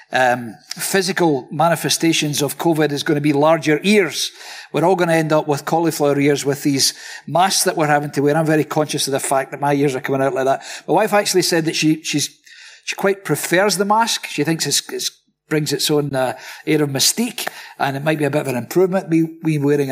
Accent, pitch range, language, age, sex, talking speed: British, 140-170 Hz, English, 50-69, male, 235 wpm